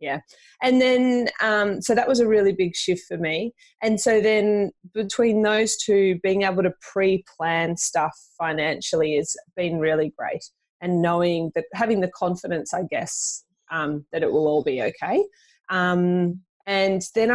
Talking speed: 165 wpm